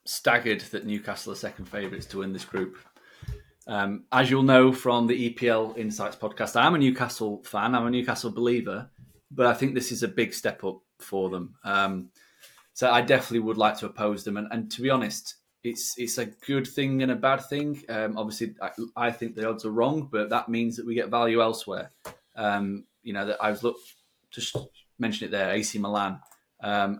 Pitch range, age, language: 105-125 Hz, 20-39, English